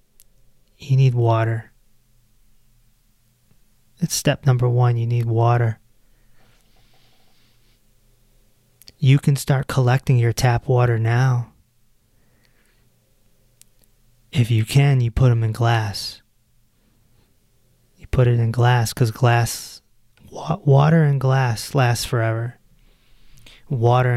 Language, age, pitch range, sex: English, 20-39, 115-130 Hz, male